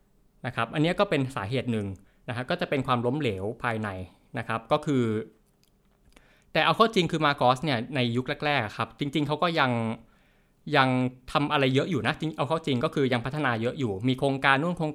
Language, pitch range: Thai, 120-150 Hz